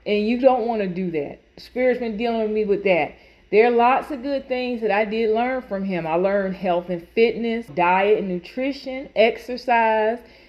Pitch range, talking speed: 195-255 Hz, 200 wpm